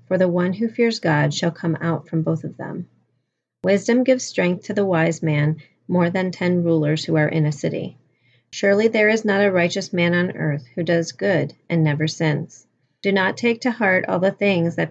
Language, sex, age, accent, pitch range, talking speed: English, female, 30-49, American, 160-200 Hz, 215 wpm